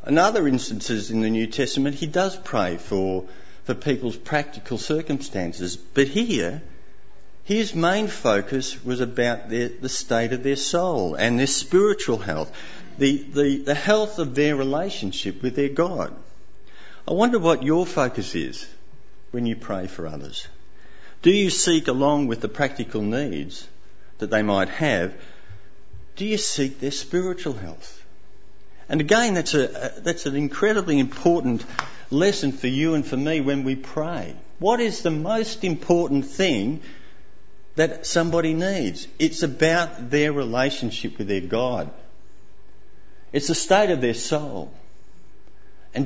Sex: male